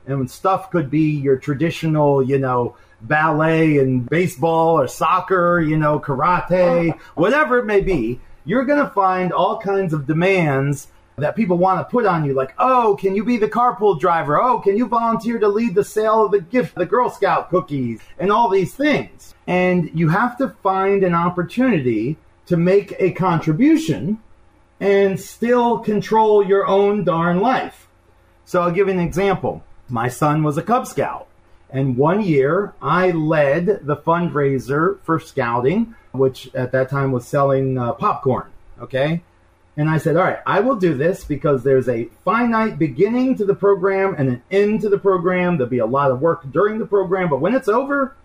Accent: American